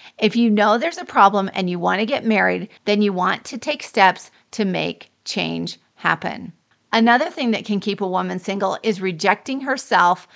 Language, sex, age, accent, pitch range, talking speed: English, female, 40-59, American, 195-235 Hz, 185 wpm